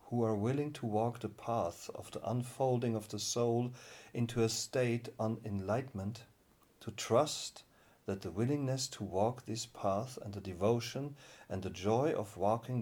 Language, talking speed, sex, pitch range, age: English, 165 wpm, male, 100-120 Hz, 50-69